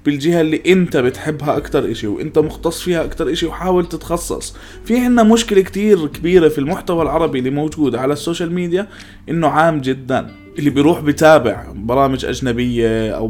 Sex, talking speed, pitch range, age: male, 160 wpm, 125-180 Hz, 20-39